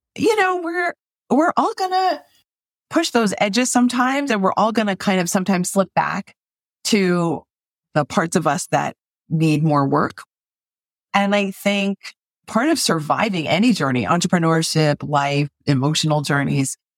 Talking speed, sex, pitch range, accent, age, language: 140 wpm, female, 145-200 Hz, American, 30-49, English